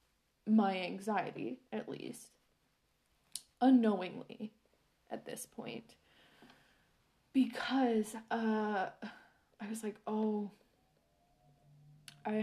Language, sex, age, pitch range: English, female, 20-39, 205-245 Hz